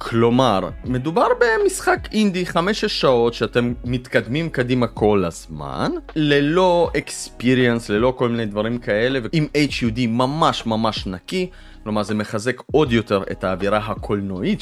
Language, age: Hebrew, 30-49